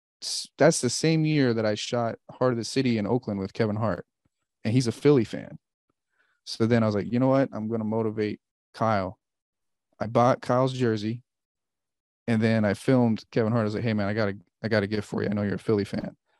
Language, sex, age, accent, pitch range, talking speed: English, male, 30-49, American, 105-130 Hz, 230 wpm